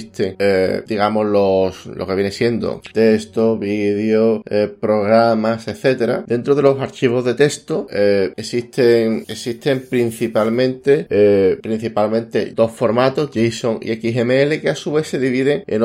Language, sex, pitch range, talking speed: Spanish, male, 110-135 Hz, 135 wpm